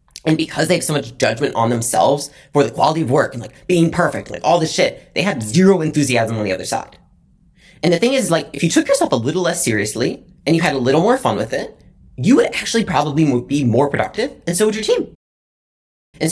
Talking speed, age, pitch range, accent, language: 245 wpm, 30-49, 120-175 Hz, American, English